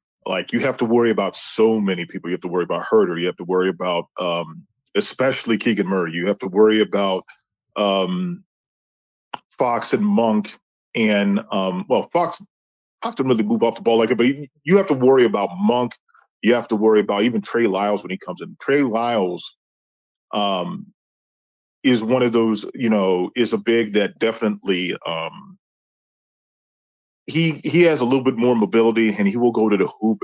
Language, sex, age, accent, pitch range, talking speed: English, male, 30-49, American, 95-120 Hz, 190 wpm